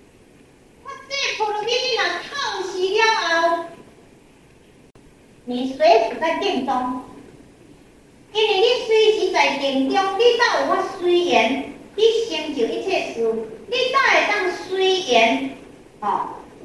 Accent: American